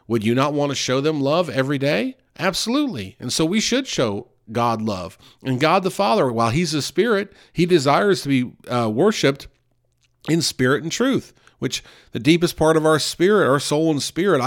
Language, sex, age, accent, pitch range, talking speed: English, male, 40-59, American, 115-155 Hz, 195 wpm